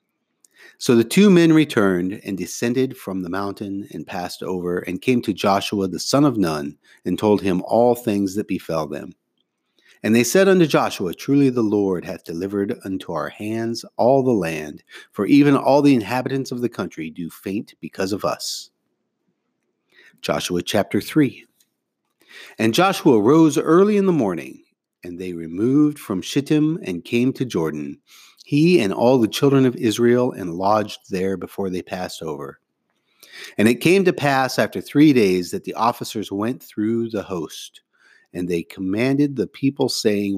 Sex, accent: male, American